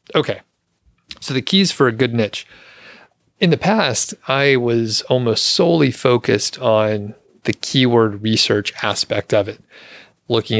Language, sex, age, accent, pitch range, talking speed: English, male, 30-49, American, 105-120 Hz, 135 wpm